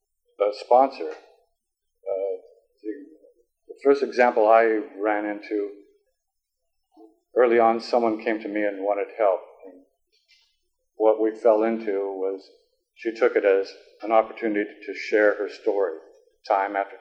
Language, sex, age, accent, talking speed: English, male, 50-69, American, 125 wpm